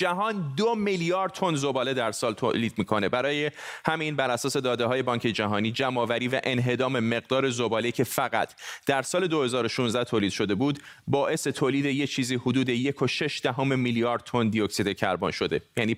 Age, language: 30-49, Persian